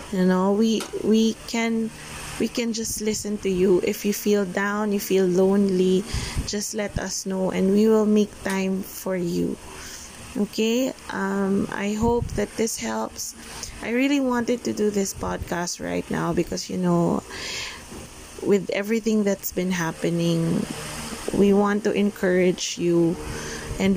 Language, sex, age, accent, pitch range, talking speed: Filipino, female, 20-39, native, 180-215 Hz, 150 wpm